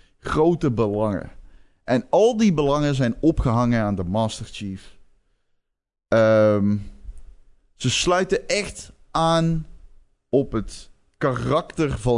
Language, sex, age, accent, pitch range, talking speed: Dutch, male, 30-49, Dutch, 100-135 Hz, 100 wpm